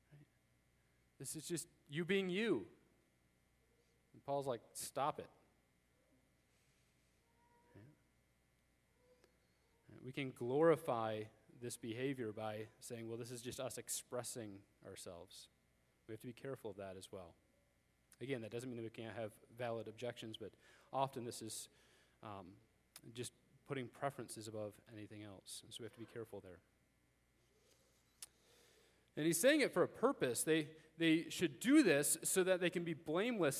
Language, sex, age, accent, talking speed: English, male, 30-49, American, 145 wpm